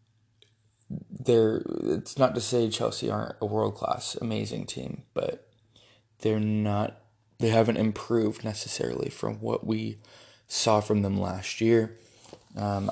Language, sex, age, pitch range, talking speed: English, male, 20-39, 105-120 Hz, 125 wpm